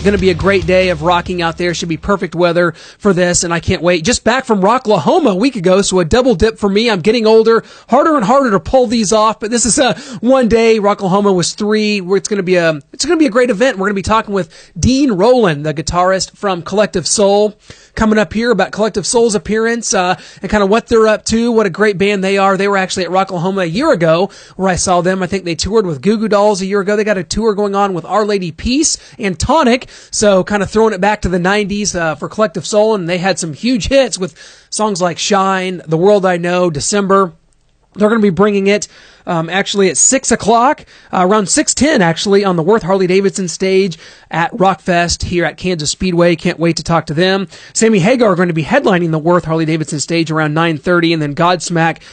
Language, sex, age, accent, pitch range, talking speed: English, male, 30-49, American, 180-220 Hz, 235 wpm